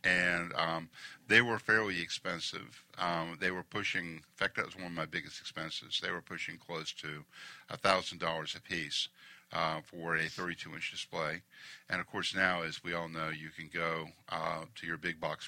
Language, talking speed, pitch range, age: English, 190 wpm, 80-85 Hz, 50-69